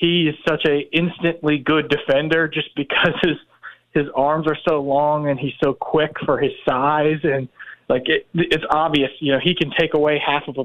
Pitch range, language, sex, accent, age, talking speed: 135-160 Hz, English, male, American, 20-39, 195 wpm